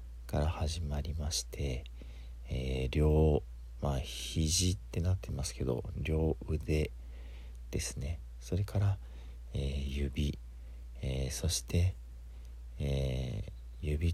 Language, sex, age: Japanese, male, 50-69